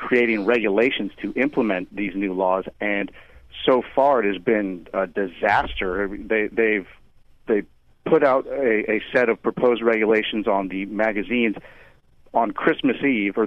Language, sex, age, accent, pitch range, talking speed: English, male, 40-59, American, 95-115 Hz, 145 wpm